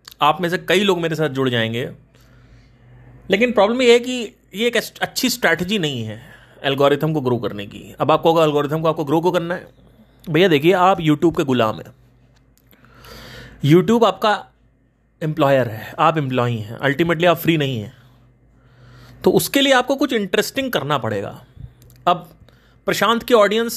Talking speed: 170 wpm